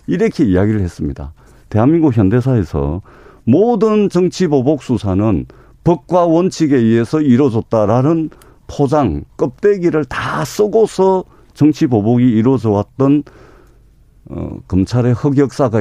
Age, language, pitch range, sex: 50-69, Korean, 105-160 Hz, male